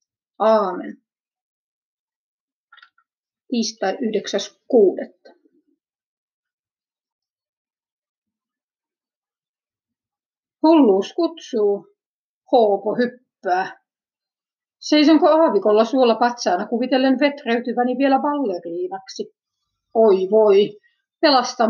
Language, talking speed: Finnish, 55 wpm